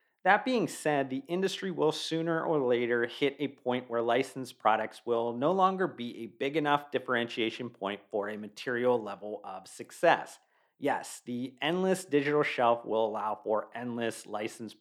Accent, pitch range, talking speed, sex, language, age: American, 115-170 Hz, 160 wpm, male, English, 40-59